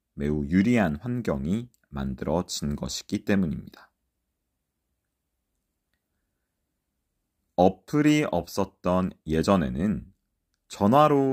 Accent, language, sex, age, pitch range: native, Korean, male, 40-59, 80-120 Hz